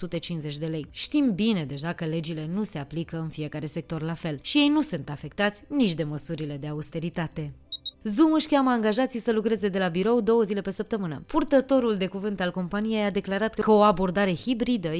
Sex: female